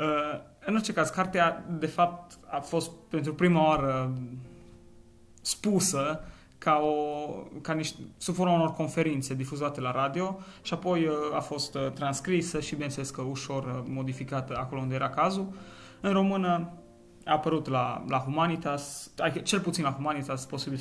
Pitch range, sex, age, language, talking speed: 135-170 Hz, male, 20-39, Romanian, 140 wpm